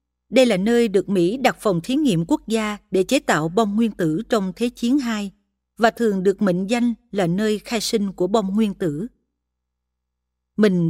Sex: female